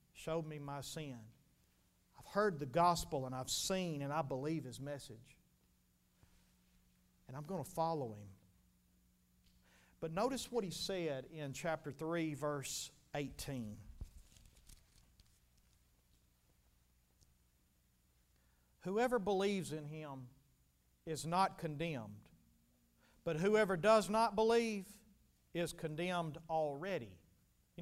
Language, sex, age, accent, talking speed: English, male, 50-69, American, 105 wpm